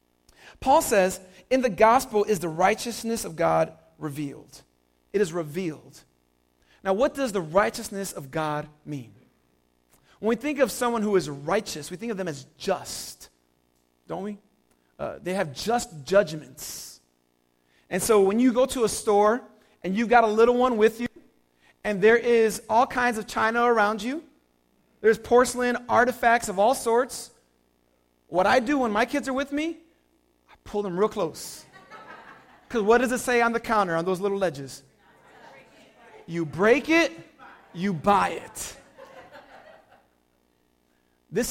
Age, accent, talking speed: 40-59, American, 155 wpm